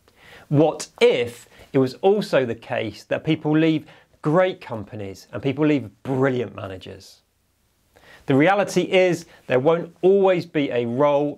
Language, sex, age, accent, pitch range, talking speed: English, male, 30-49, British, 105-150 Hz, 135 wpm